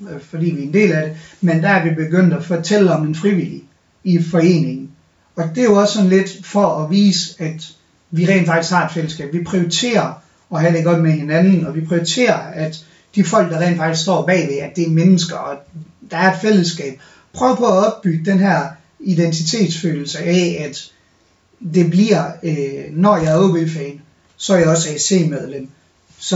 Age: 30-49